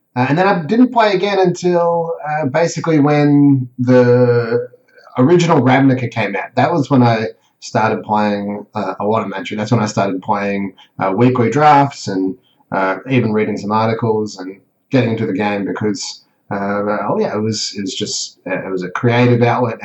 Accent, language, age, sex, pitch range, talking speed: Australian, English, 30-49, male, 110-135 Hz, 185 wpm